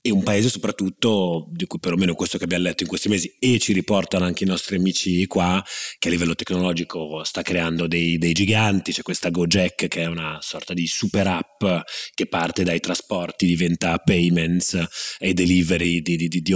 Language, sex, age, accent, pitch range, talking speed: Italian, male, 30-49, native, 85-110 Hz, 190 wpm